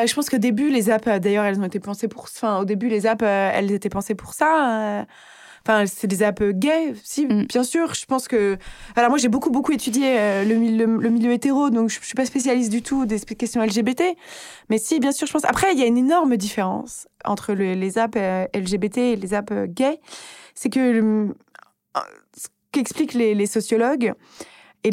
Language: French